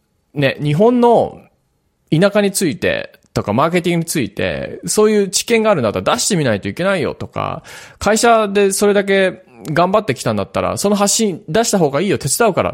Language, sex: Japanese, male